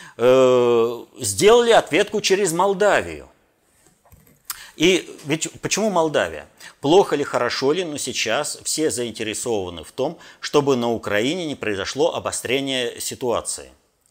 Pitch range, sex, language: 105-135 Hz, male, Russian